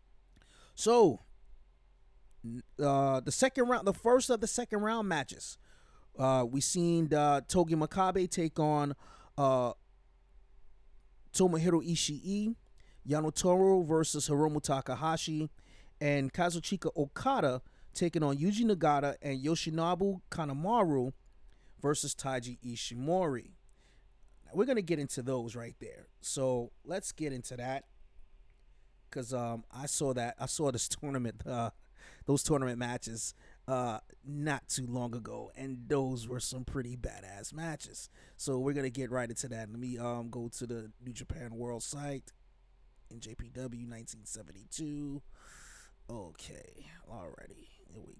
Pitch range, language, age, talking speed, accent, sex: 120-155 Hz, English, 30-49, 130 wpm, American, male